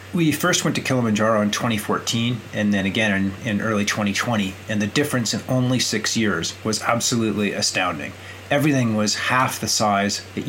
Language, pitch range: English, 100-125 Hz